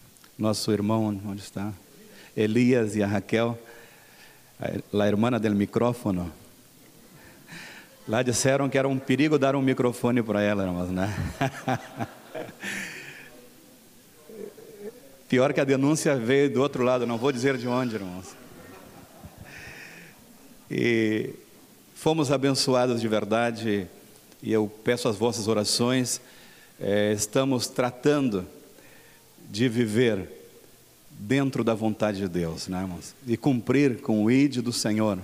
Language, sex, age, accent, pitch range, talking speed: Portuguese, male, 40-59, Brazilian, 110-130 Hz, 115 wpm